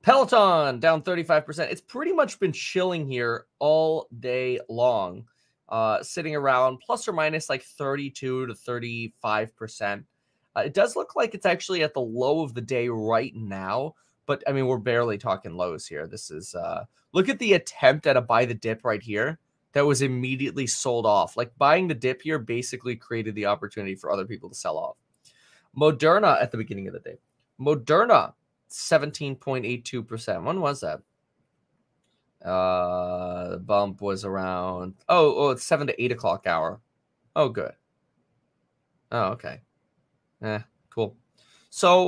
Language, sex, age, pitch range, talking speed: English, male, 20-39, 110-155 Hz, 160 wpm